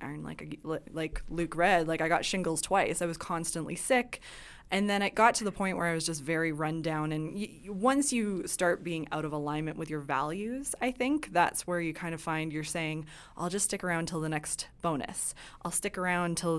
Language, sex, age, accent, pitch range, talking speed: English, female, 20-39, American, 160-195 Hz, 220 wpm